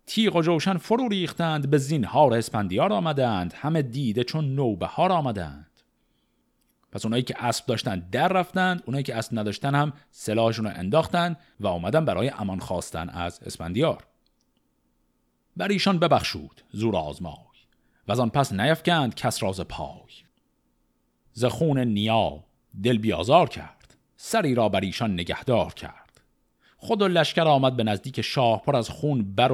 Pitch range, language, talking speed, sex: 105-150 Hz, Persian, 145 wpm, male